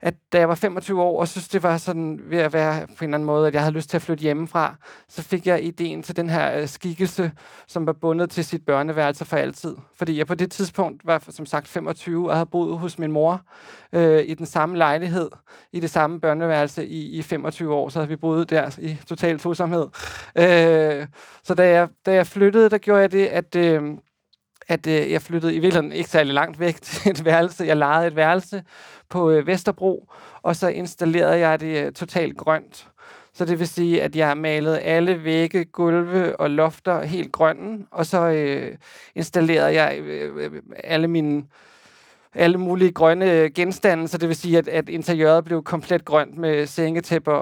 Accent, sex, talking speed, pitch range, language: native, male, 195 wpm, 155-175 Hz, Danish